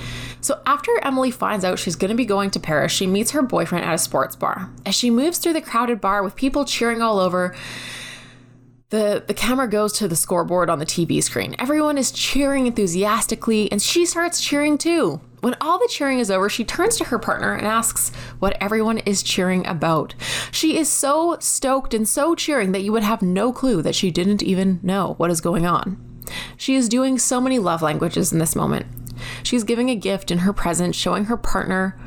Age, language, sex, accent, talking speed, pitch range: 20-39, English, female, American, 210 wpm, 175-245 Hz